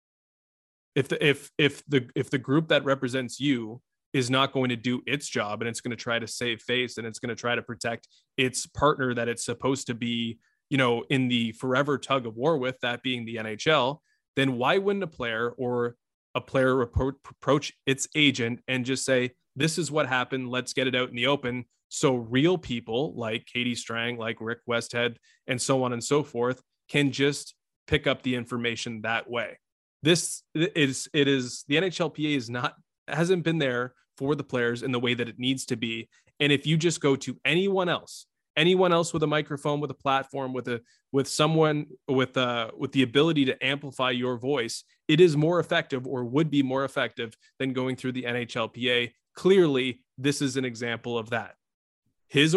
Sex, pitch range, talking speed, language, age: male, 120-145 Hz, 200 wpm, English, 20-39